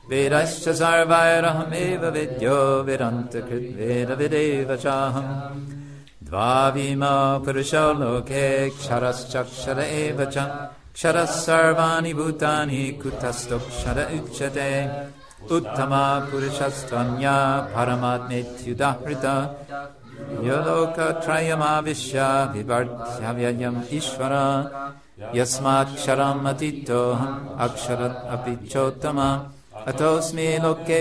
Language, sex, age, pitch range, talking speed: English, male, 50-69, 130-145 Hz, 55 wpm